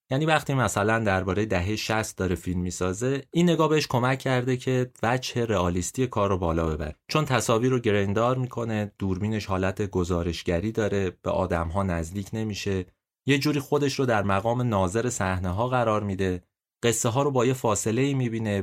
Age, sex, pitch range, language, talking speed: 30-49, male, 95-130 Hz, Persian, 175 wpm